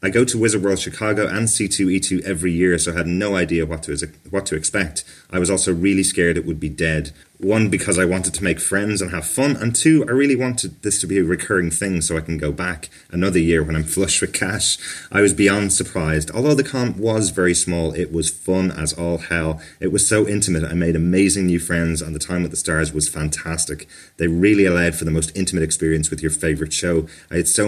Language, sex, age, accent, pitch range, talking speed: English, male, 30-49, British, 80-95 Hz, 240 wpm